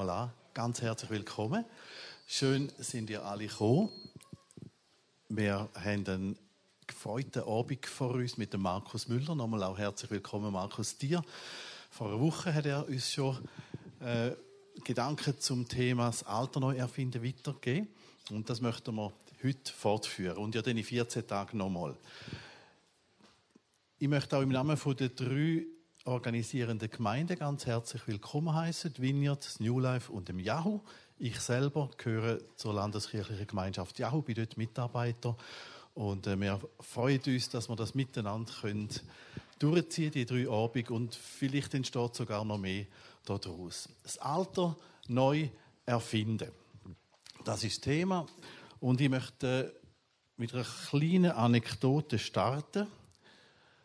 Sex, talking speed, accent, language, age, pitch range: male, 130 wpm, Austrian, German, 50-69, 110-140 Hz